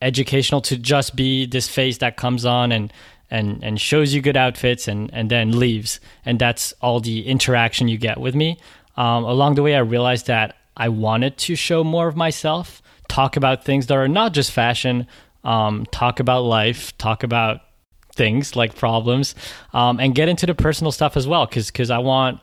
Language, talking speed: English, 195 wpm